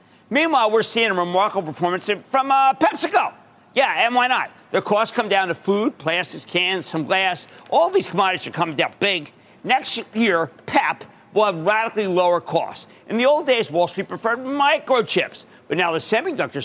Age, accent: 50-69, American